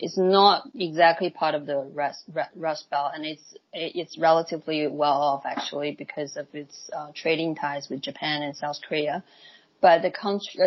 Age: 20-39